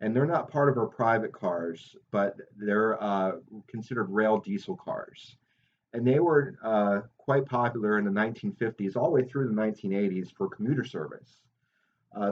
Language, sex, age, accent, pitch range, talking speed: English, male, 30-49, American, 95-115 Hz, 165 wpm